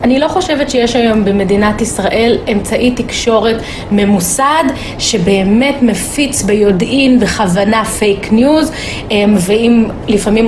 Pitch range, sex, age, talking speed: 205-260 Hz, female, 30-49, 105 wpm